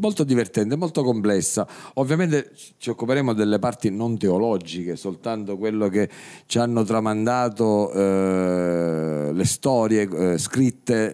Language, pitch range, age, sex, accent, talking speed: Italian, 100-145 Hz, 40-59, male, native, 120 wpm